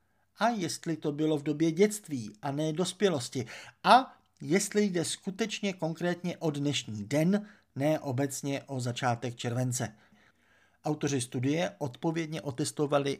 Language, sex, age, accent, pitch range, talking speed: Czech, male, 50-69, native, 125-165 Hz, 125 wpm